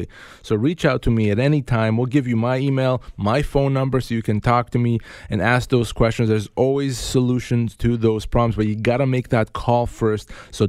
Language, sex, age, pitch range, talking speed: English, male, 30-49, 110-135 Hz, 225 wpm